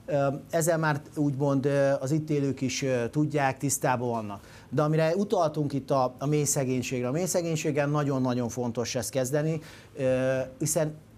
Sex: male